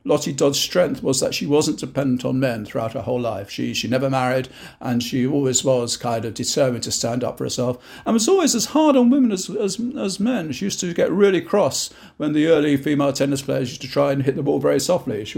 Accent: British